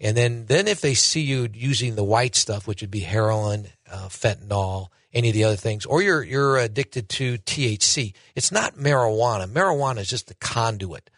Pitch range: 105-130 Hz